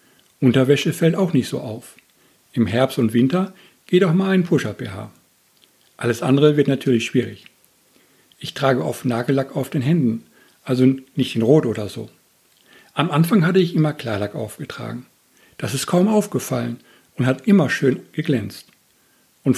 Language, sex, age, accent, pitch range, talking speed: German, male, 60-79, German, 120-160 Hz, 155 wpm